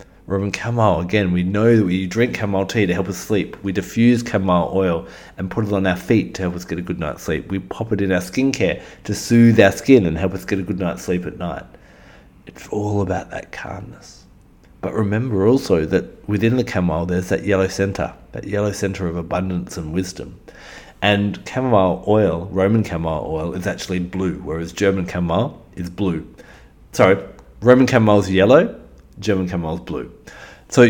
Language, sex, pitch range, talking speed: English, male, 90-110 Hz, 190 wpm